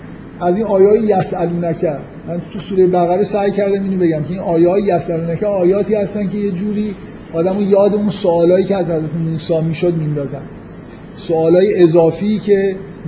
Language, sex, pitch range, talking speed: Persian, male, 160-190 Hz, 150 wpm